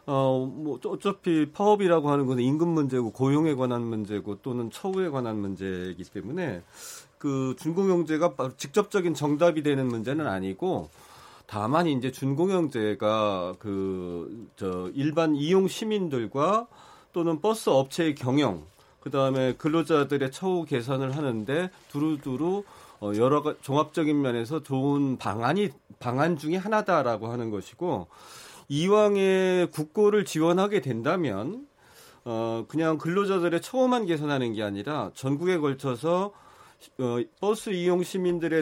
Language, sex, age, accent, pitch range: Korean, male, 40-59, native, 130-190 Hz